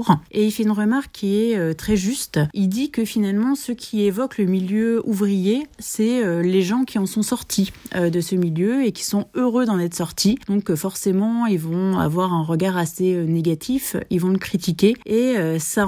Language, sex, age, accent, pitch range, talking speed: French, female, 30-49, French, 180-220 Hz, 195 wpm